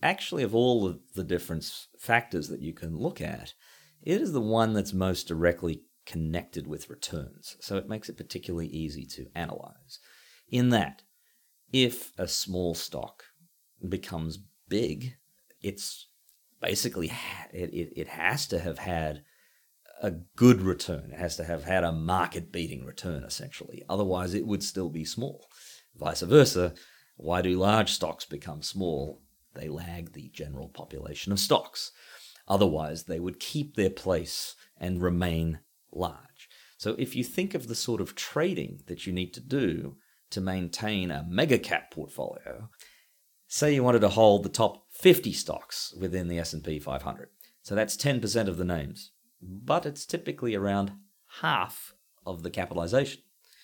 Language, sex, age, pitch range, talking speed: English, male, 40-59, 85-110 Hz, 150 wpm